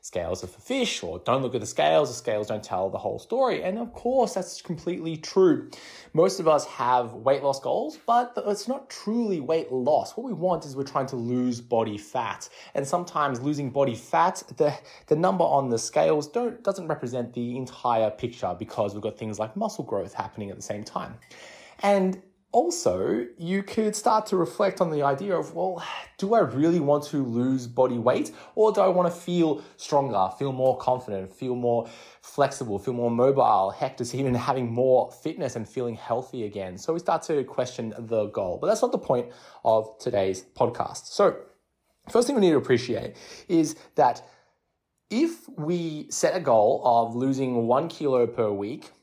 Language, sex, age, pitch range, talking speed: English, male, 20-39, 120-185 Hz, 190 wpm